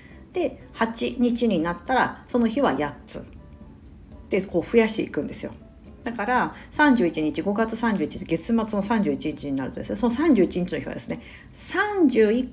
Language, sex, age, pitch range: Japanese, female, 50-69, 170-245 Hz